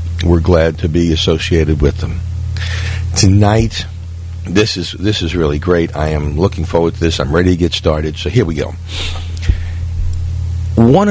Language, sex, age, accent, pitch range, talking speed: English, male, 50-69, American, 85-95 Hz, 160 wpm